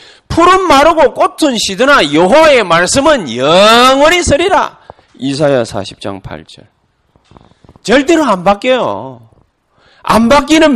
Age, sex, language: 40-59, male, Korean